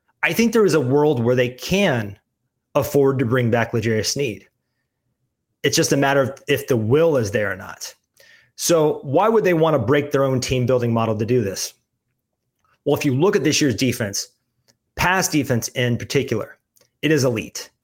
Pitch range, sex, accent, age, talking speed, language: 120-150 Hz, male, American, 30-49, 190 wpm, English